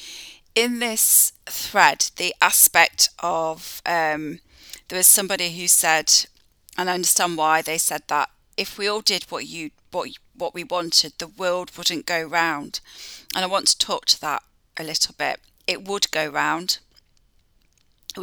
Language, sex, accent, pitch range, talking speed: English, female, British, 155-180 Hz, 160 wpm